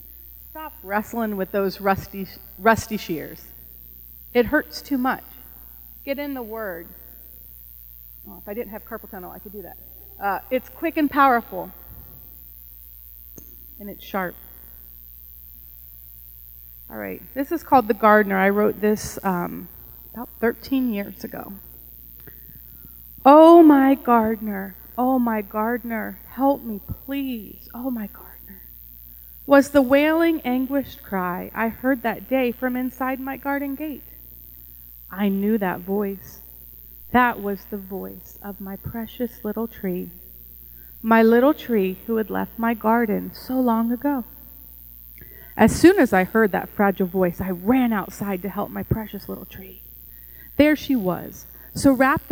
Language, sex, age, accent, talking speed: English, female, 30-49, American, 140 wpm